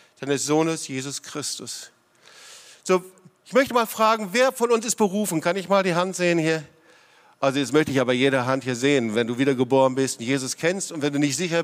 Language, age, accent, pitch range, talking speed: German, 50-69, German, 170-220 Hz, 215 wpm